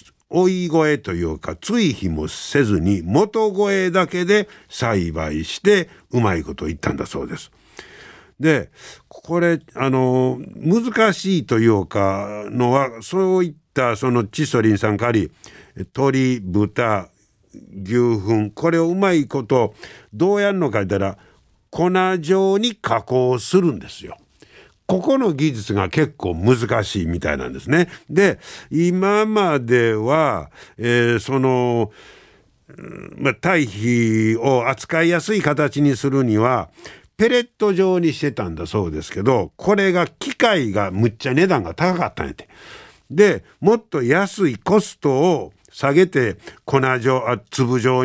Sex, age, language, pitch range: male, 60-79, Japanese, 105-175 Hz